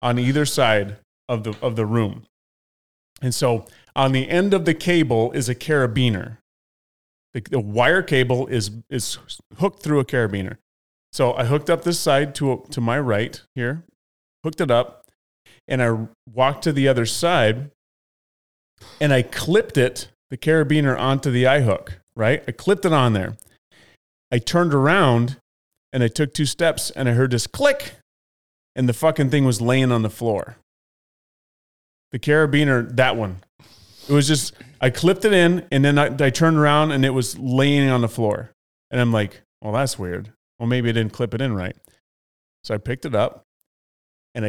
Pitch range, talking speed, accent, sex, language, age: 105-140 Hz, 180 wpm, American, male, English, 30-49